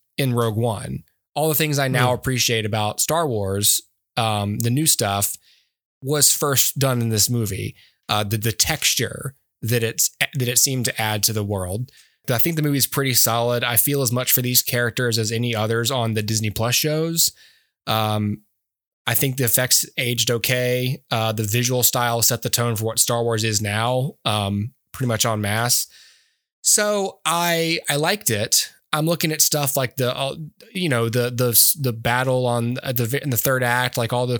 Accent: American